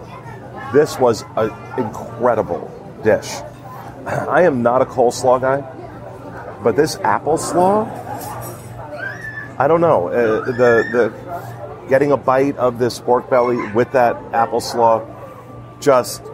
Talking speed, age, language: 115 wpm, 40-59, English